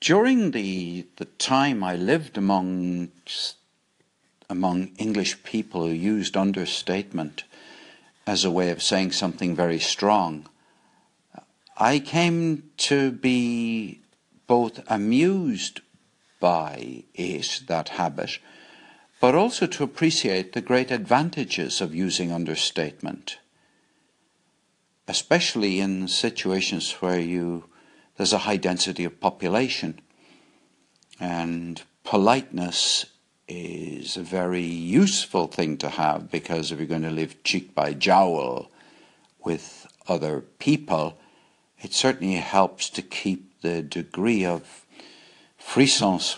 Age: 60-79